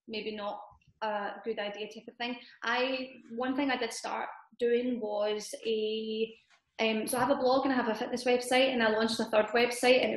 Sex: female